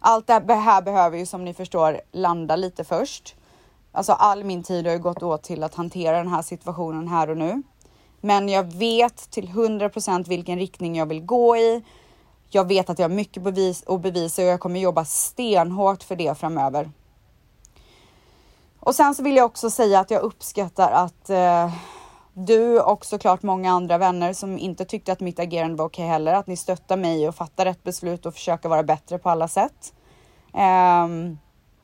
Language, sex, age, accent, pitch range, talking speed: Swedish, female, 20-39, native, 170-200 Hz, 185 wpm